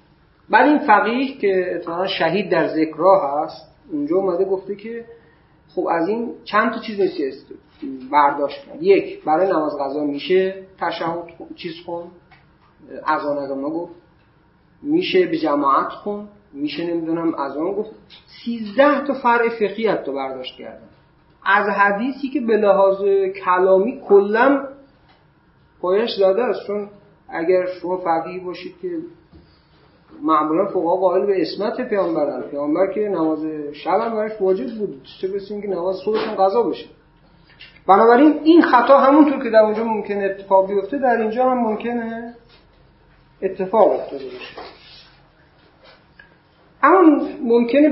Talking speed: 120 wpm